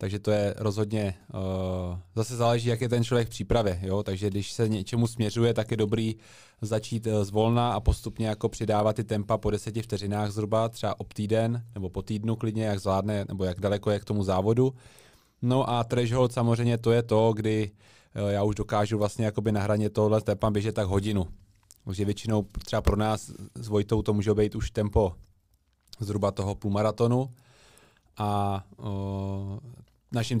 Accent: native